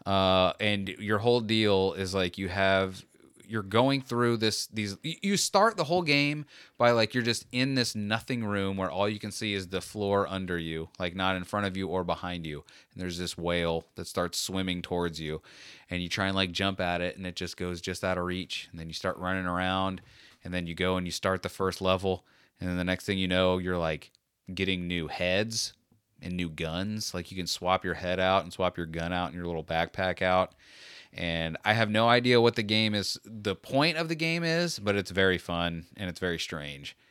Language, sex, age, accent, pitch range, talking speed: English, male, 30-49, American, 90-115 Hz, 230 wpm